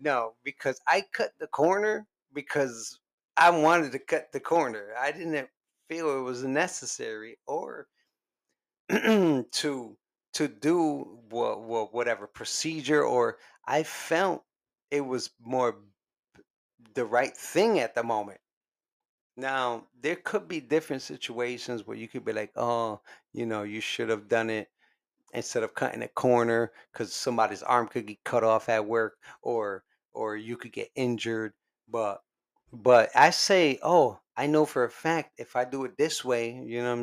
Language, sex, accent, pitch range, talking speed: English, male, American, 120-155 Hz, 155 wpm